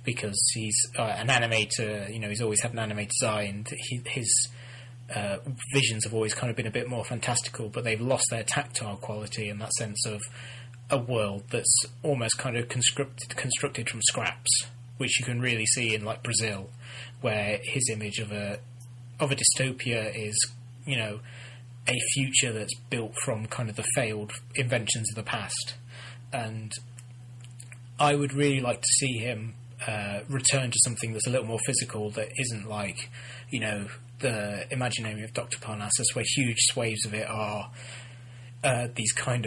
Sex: male